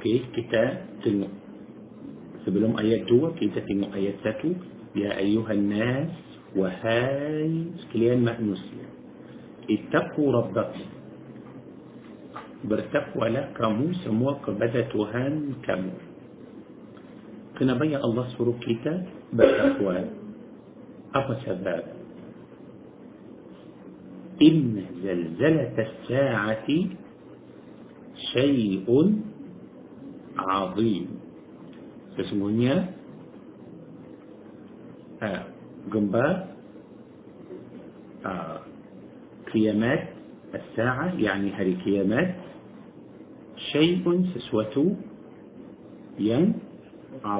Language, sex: Malay, male